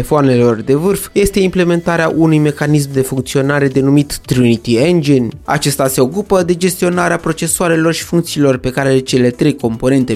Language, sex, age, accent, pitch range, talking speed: Romanian, male, 20-39, native, 125-160 Hz, 150 wpm